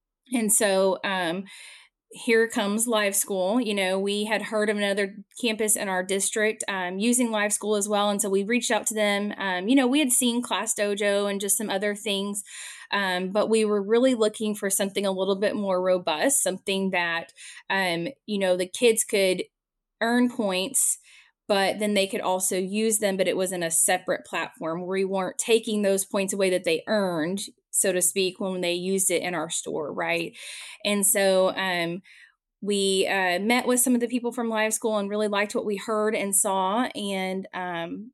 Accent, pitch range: American, 190-220 Hz